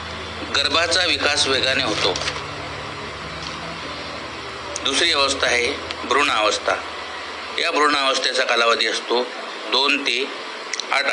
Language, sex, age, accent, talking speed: Marathi, male, 60-79, native, 85 wpm